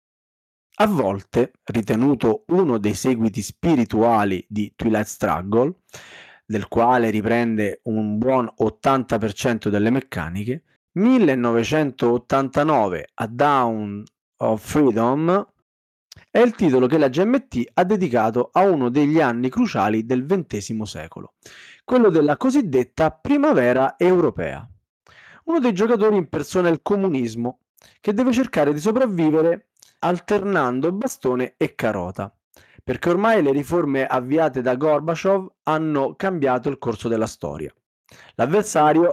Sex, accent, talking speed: male, native, 115 wpm